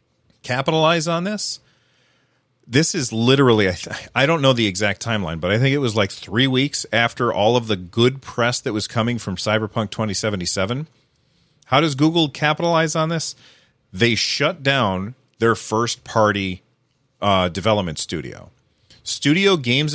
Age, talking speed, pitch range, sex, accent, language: 30-49, 145 wpm, 110-145 Hz, male, American, English